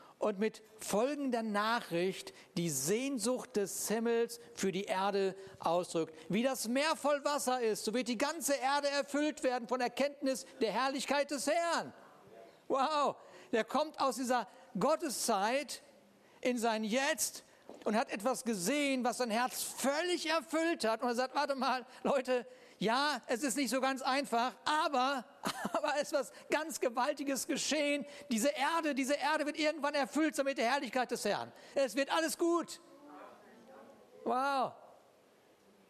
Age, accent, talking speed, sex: 50-69, German, 145 wpm, male